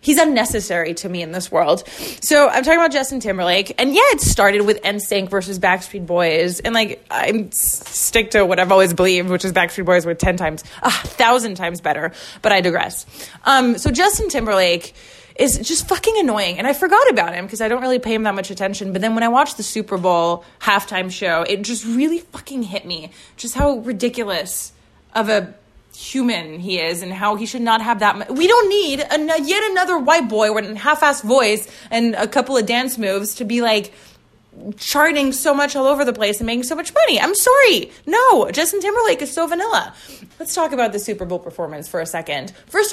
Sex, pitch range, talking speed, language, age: female, 195-290 Hz, 210 wpm, English, 20-39